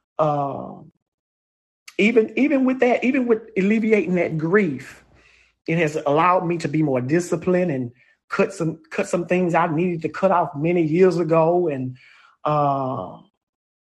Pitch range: 140-190 Hz